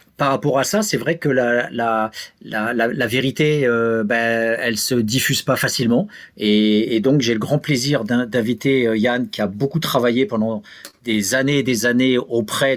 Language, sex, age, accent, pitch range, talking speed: French, male, 50-69, French, 115-145 Hz, 190 wpm